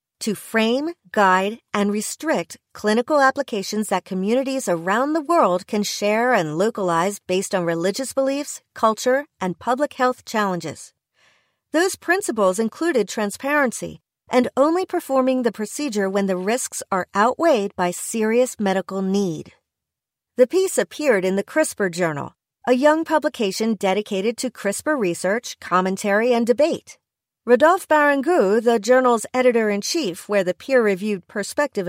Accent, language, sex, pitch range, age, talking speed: American, English, female, 195-260 Hz, 40-59, 130 wpm